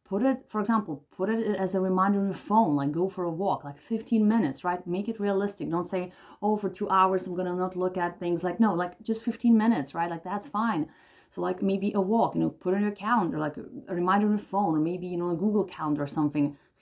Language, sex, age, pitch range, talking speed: English, female, 30-49, 160-200 Hz, 270 wpm